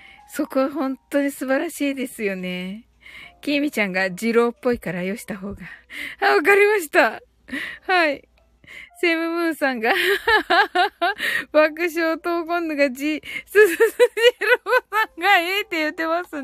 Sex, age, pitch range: female, 20-39, 255-390 Hz